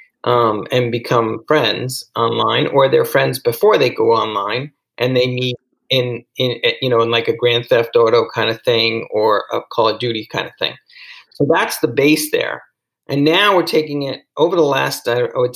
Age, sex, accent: 40-59, male, American